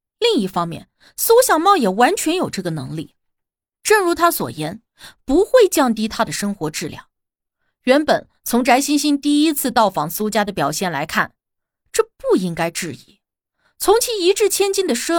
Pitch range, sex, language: 190-315 Hz, female, Chinese